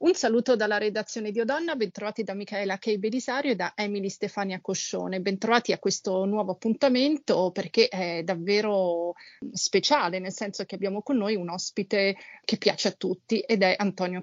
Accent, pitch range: native, 185-225 Hz